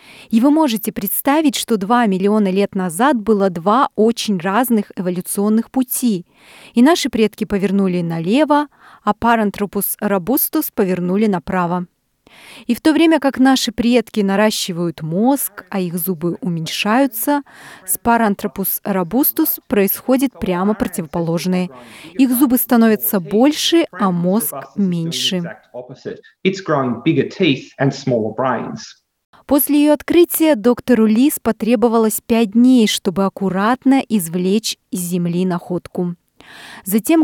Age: 30-49